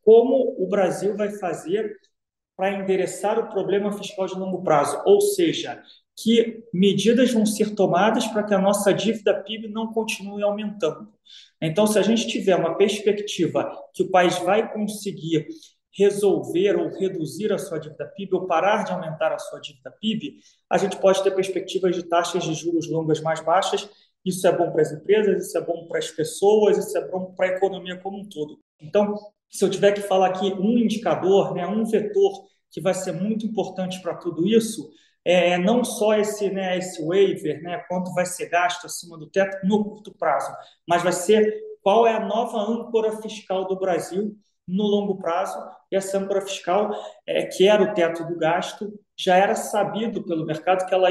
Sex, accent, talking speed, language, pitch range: male, Brazilian, 185 wpm, Portuguese, 180-210 Hz